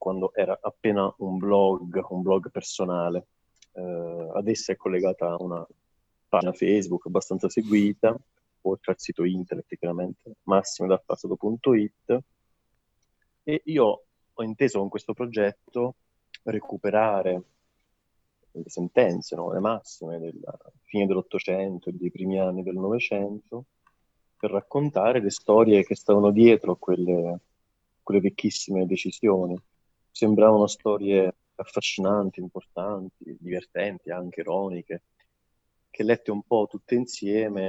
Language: Italian